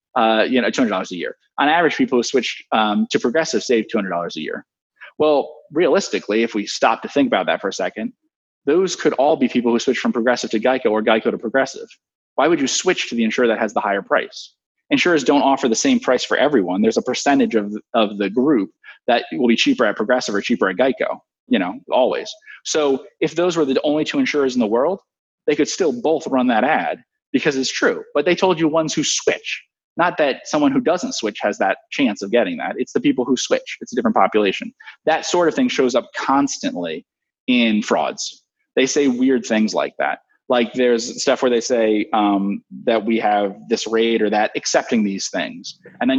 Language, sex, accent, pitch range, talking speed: English, male, American, 110-175 Hz, 220 wpm